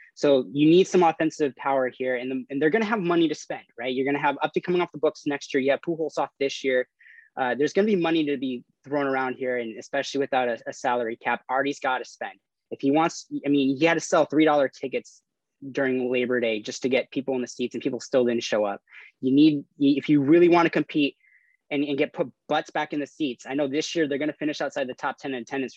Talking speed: 255 wpm